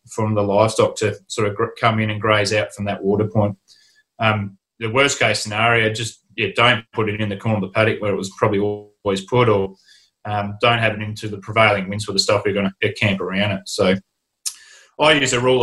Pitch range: 105-125 Hz